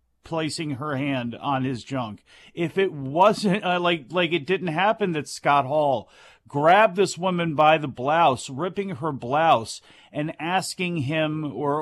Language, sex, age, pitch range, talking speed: English, male, 40-59, 150-195 Hz, 155 wpm